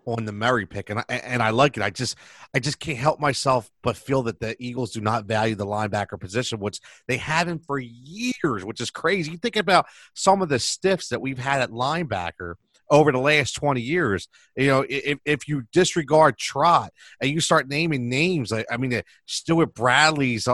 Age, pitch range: 30-49, 115-150 Hz